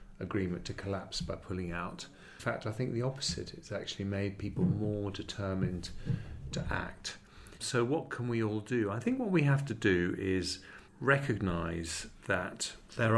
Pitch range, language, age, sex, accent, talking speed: 90-115 Hz, English, 40-59, male, British, 170 wpm